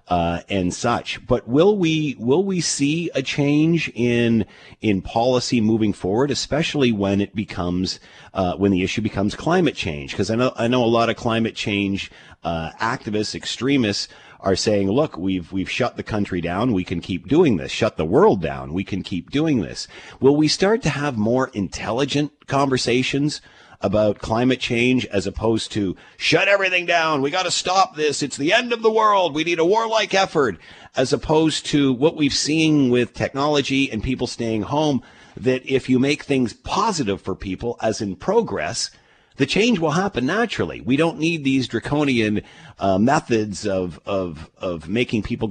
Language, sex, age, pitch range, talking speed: English, male, 40-59, 100-145 Hz, 180 wpm